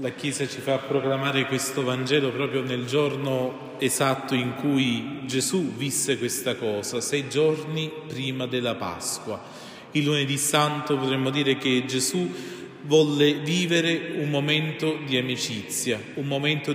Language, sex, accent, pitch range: Italian, male, native, 130-155 Hz